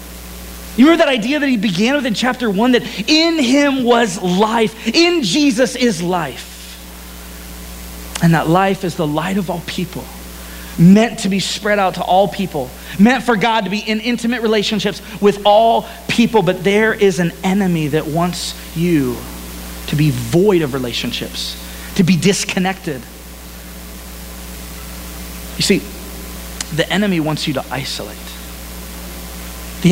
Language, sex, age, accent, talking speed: English, male, 30-49, American, 145 wpm